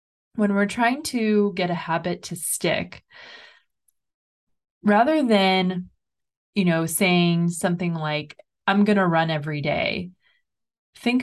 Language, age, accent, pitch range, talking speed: English, 20-39, American, 165-195 Hz, 125 wpm